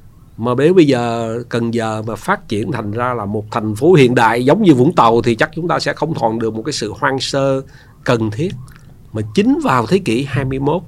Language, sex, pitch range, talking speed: Vietnamese, male, 115-160 Hz, 230 wpm